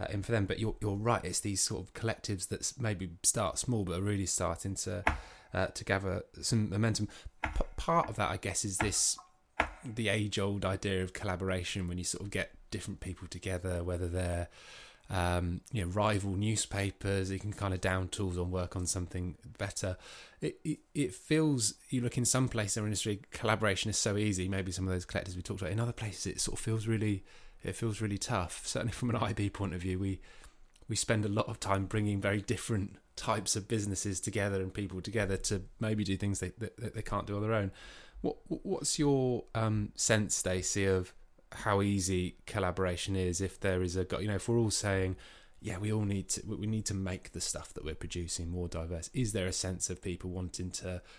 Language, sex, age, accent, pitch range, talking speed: English, male, 20-39, British, 90-110 Hz, 215 wpm